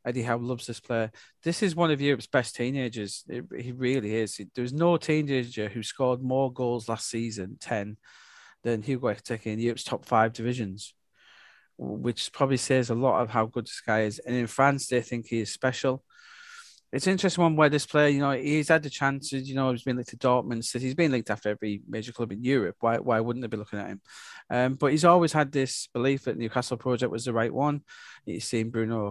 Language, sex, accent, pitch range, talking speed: English, male, British, 115-135 Hz, 220 wpm